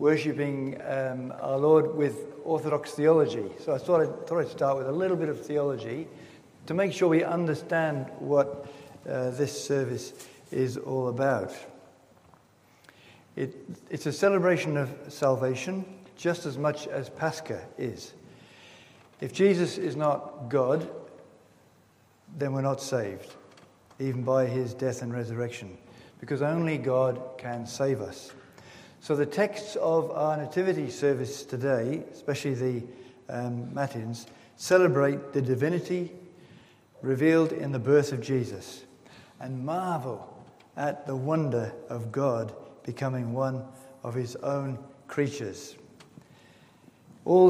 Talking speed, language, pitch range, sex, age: 125 wpm, English, 130-155 Hz, male, 60-79